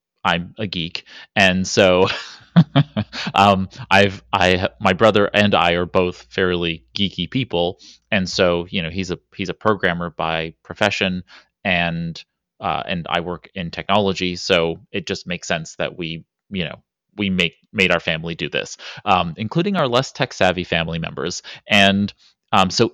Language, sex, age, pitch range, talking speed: English, male, 30-49, 90-110 Hz, 160 wpm